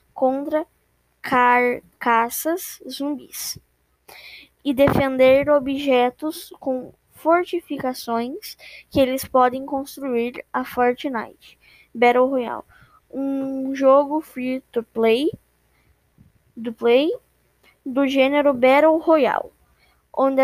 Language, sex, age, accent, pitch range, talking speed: Portuguese, female, 10-29, Brazilian, 255-290 Hz, 80 wpm